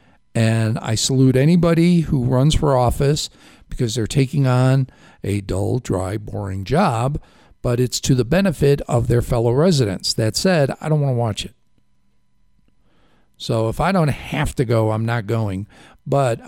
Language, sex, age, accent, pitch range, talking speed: English, male, 50-69, American, 105-140 Hz, 165 wpm